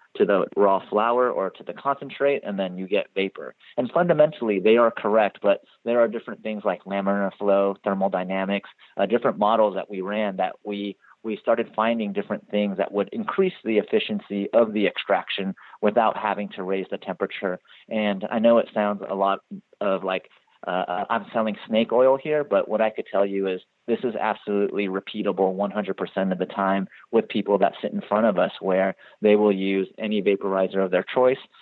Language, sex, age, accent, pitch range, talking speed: English, male, 30-49, American, 100-110 Hz, 190 wpm